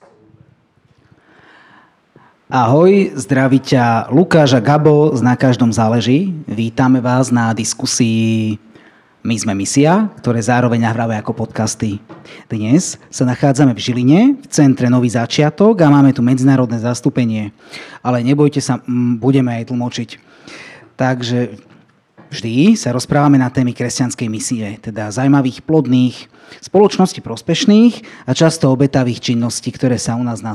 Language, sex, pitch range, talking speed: Slovak, male, 115-145 Hz, 120 wpm